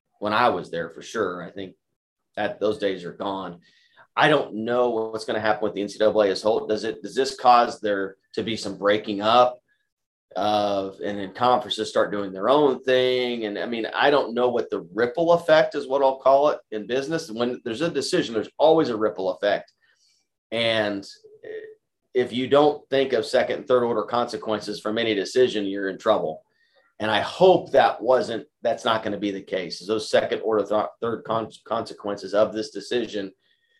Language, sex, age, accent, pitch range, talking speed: English, male, 30-49, American, 105-155 Hz, 200 wpm